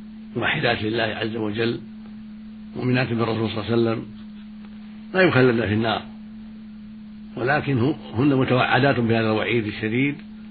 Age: 60-79